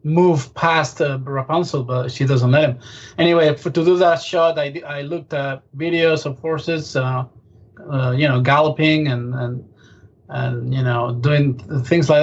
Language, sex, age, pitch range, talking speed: English, male, 20-39, 130-160 Hz, 170 wpm